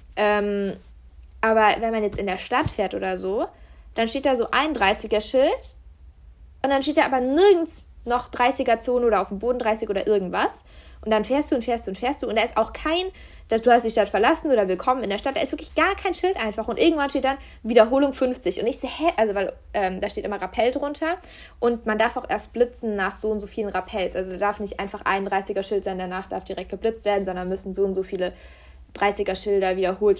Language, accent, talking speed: German, German, 235 wpm